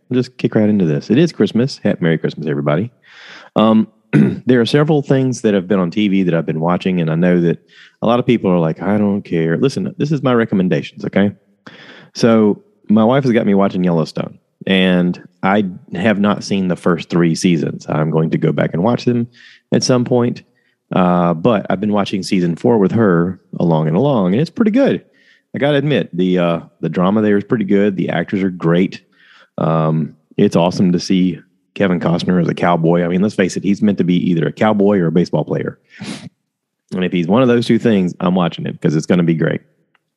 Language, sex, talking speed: English, male, 225 wpm